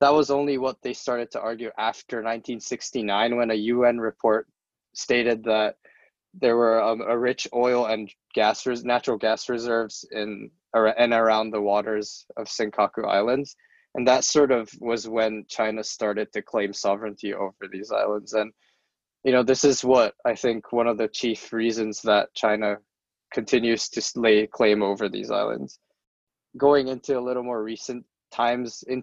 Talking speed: 165 wpm